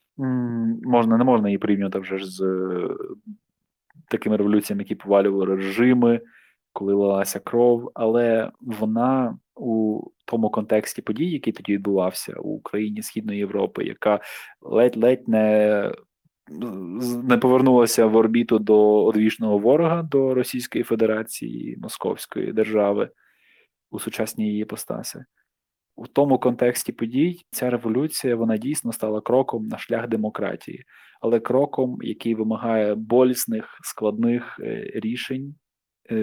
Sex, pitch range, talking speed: male, 105-125 Hz, 115 wpm